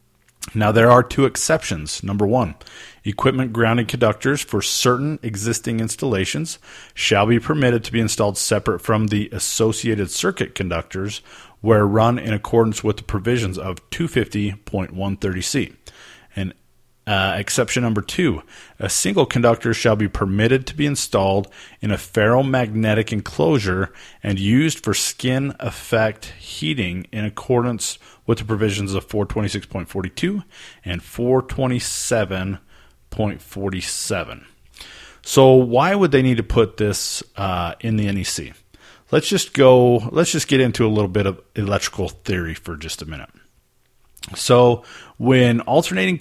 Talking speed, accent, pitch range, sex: 125 wpm, American, 100-120 Hz, male